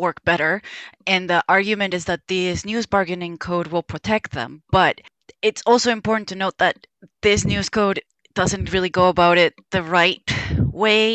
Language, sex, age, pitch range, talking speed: English, female, 20-39, 175-215 Hz, 170 wpm